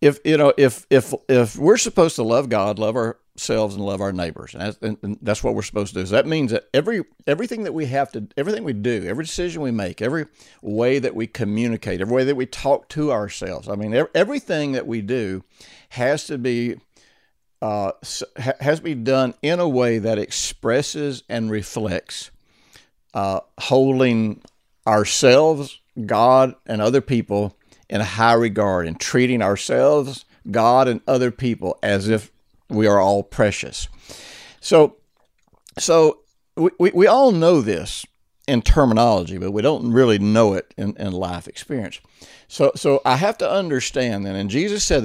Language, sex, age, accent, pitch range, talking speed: English, male, 60-79, American, 105-135 Hz, 170 wpm